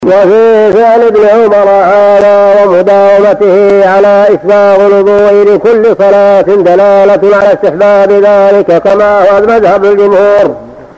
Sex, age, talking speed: male, 50-69, 105 wpm